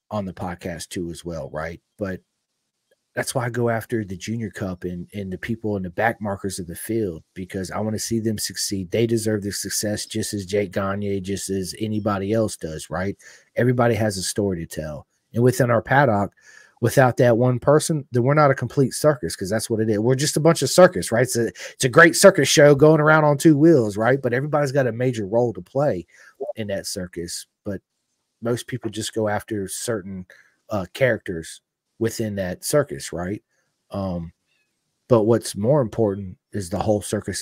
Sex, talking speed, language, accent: male, 200 wpm, English, American